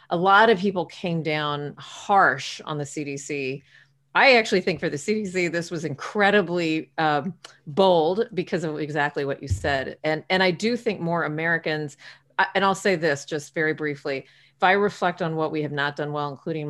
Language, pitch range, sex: English, 140-175 Hz, female